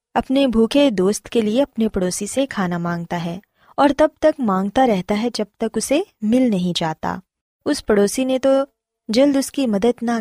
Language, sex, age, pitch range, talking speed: Urdu, female, 20-39, 180-250 Hz, 190 wpm